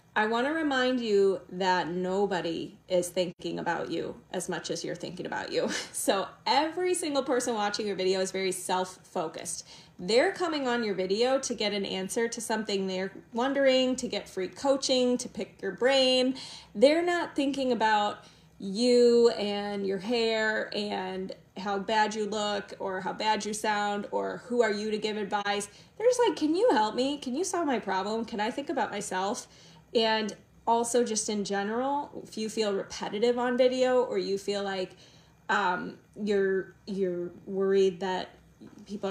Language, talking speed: English, 170 wpm